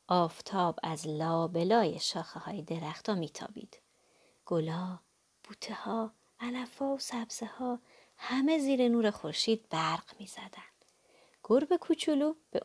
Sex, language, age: female, Persian, 30-49